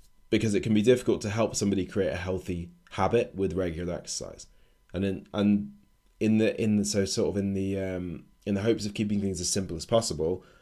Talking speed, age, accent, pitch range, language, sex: 215 wpm, 20-39, British, 90-105 Hz, English, male